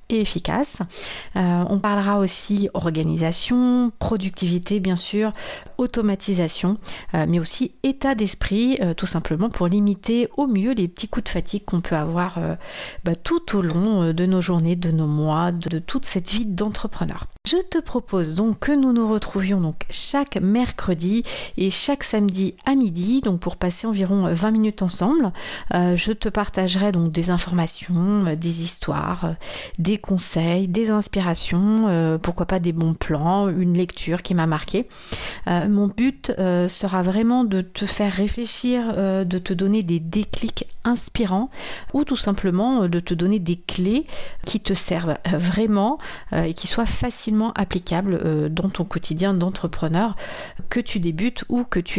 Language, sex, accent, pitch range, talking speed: French, female, French, 175-220 Hz, 165 wpm